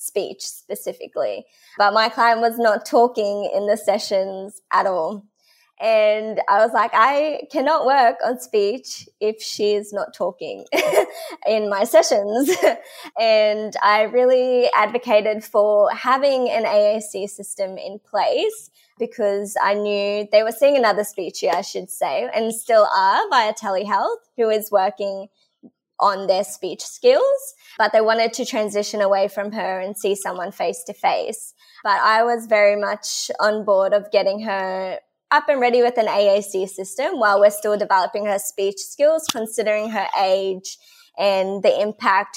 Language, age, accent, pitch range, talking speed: English, 20-39, Australian, 205-255 Hz, 150 wpm